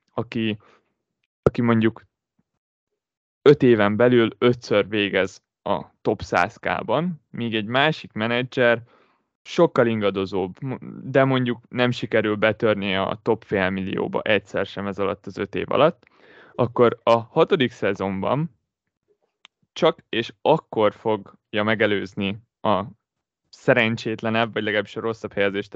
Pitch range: 105-130 Hz